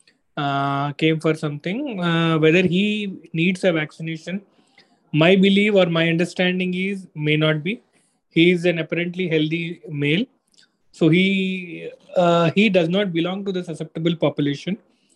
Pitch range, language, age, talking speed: 155-180 Hz, English, 20-39, 145 wpm